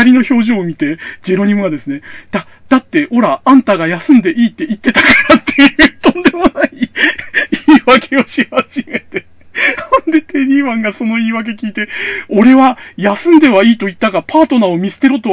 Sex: male